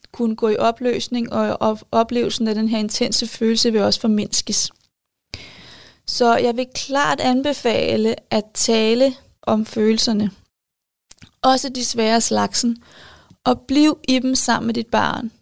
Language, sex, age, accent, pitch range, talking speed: Danish, female, 30-49, native, 220-250 Hz, 135 wpm